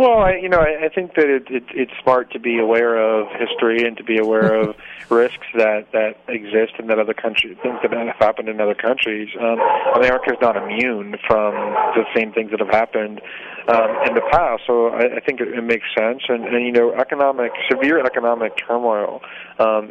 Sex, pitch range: male, 105-120 Hz